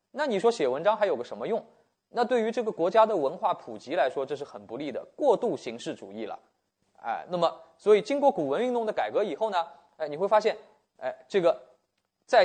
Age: 20-39